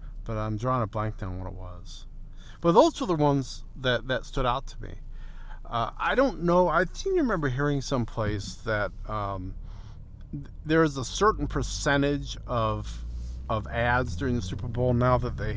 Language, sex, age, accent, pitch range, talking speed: English, male, 50-69, American, 105-145 Hz, 185 wpm